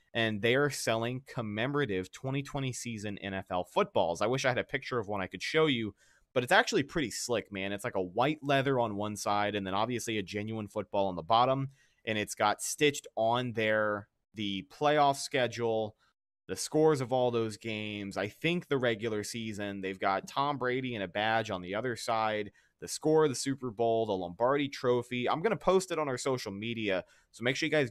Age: 30-49